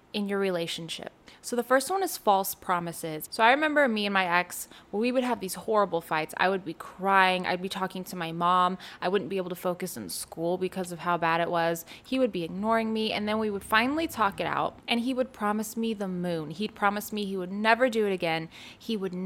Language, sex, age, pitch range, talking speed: English, female, 20-39, 180-225 Hz, 245 wpm